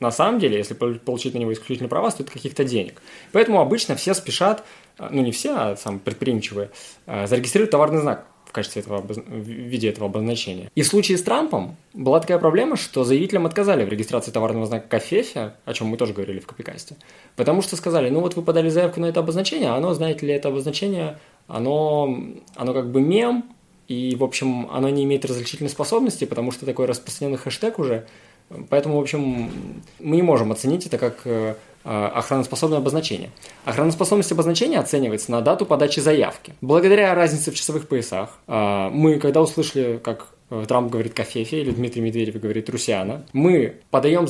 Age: 20-39